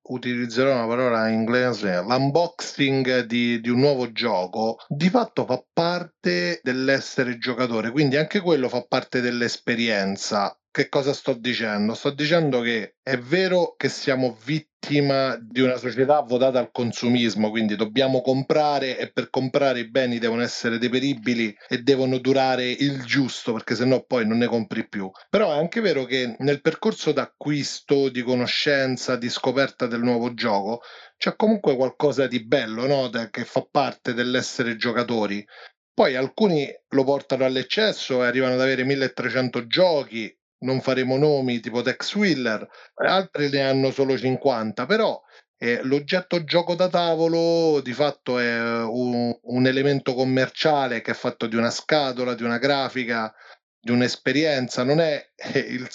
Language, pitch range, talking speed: Italian, 120-145 Hz, 150 wpm